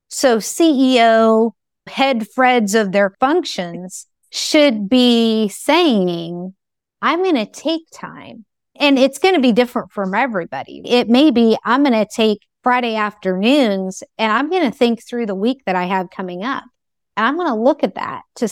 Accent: American